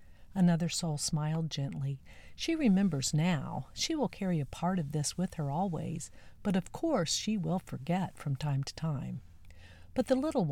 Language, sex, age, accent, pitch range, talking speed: English, female, 50-69, American, 145-195 Hz, 170 wpm